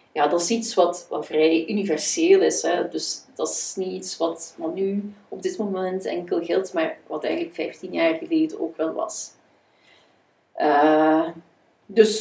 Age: 40-59